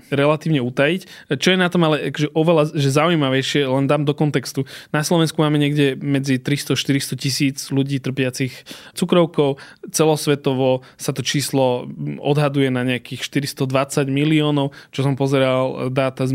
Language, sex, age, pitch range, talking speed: Slovak, male, 20-39, 140-160 Hz, 145 wpm